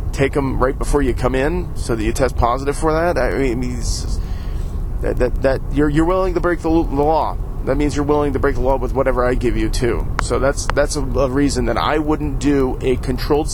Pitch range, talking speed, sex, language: 110-140 Hz, 235 wpm, male, English